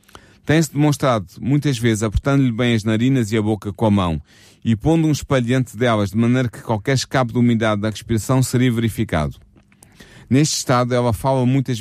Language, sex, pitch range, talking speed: English, male, 110-135 Hz, 180 wpm